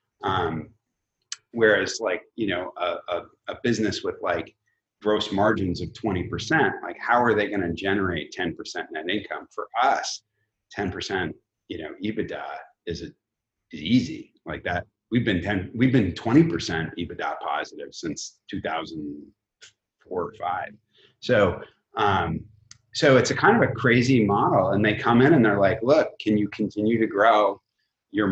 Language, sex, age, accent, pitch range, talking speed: English, male, 30-49, American, 100-115 Hz, 165 wpm